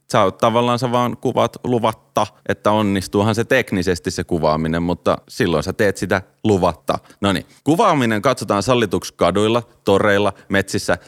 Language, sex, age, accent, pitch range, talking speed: Finnish, male, 30-49, native, 90-115 Hz, 135 wpm